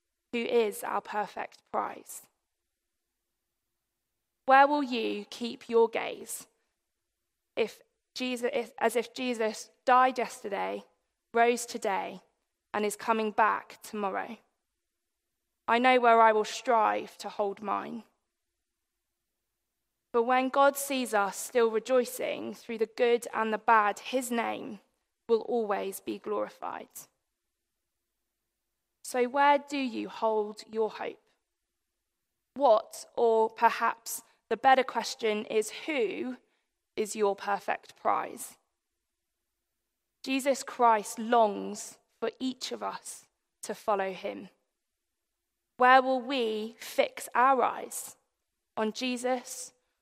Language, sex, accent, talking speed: English, female, British, 110 wpm